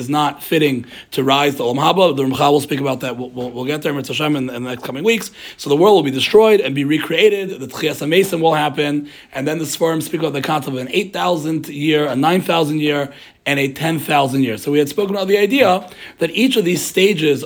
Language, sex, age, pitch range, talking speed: English, male, 30-49, 140-185 Hz, 235 wpm